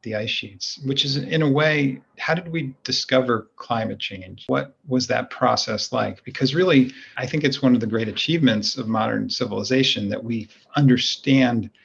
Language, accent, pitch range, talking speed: English, American, 115-130 Hz, 175 wpm